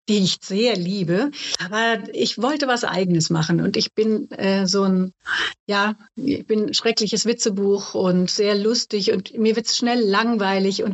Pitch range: 190-245 Hz